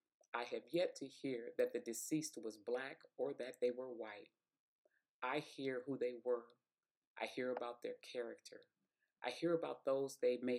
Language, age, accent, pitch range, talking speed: English, 40-59, American, 115-145 Hz, 175 wpm